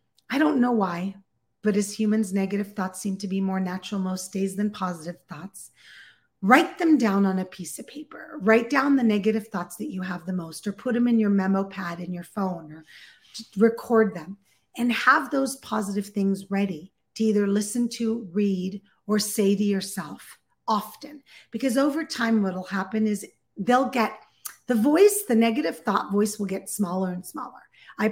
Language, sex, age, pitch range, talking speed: English, female, 40-59, 195-255 Hz, 185 wpm